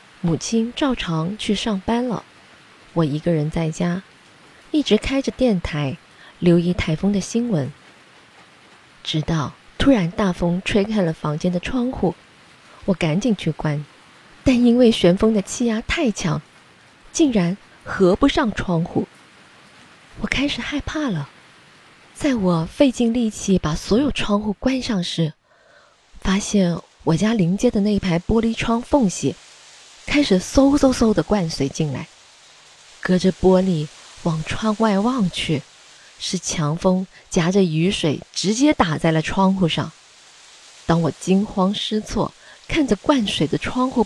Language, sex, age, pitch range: Chinese, female, 20-39, 165-230 Hz